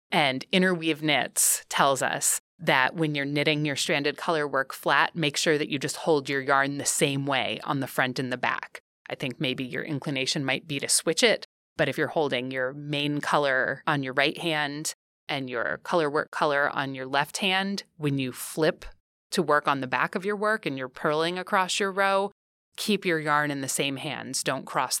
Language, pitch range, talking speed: English, 140-175 Hz, 205 wpm